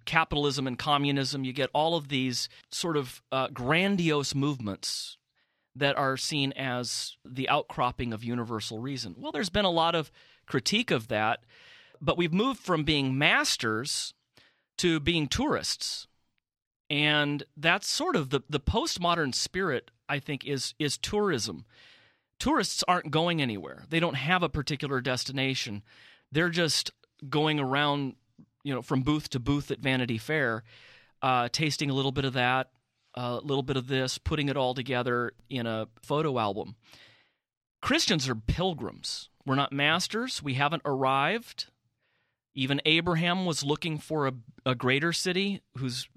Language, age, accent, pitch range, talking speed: English, 30-49, American, 130-160 Hz, 150 wpm